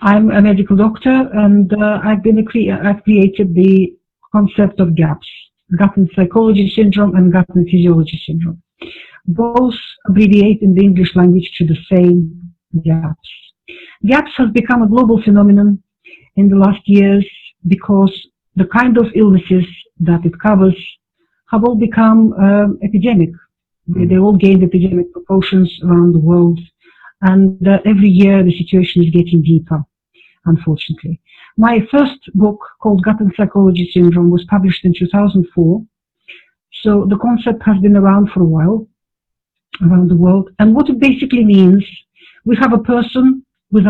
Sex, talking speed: female, 150 wpm